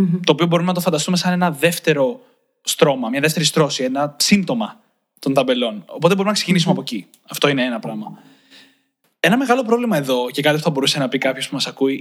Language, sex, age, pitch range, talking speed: Greek, male, 20-39, 145-205 Hz, 205 wpm